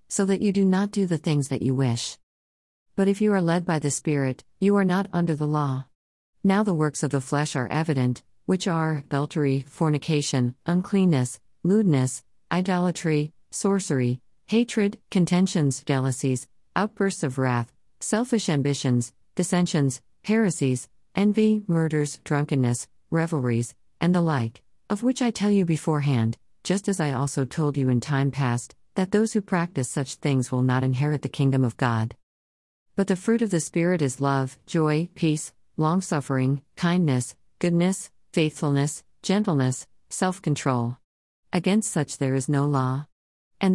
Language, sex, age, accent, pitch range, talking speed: English, female, 50-69, American, 130-180 Hz, 150 wpm